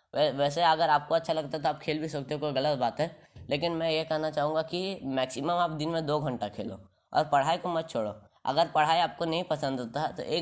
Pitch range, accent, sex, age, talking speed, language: 130-160 Hz, native, female, 10-29, 240 wpm, Hindi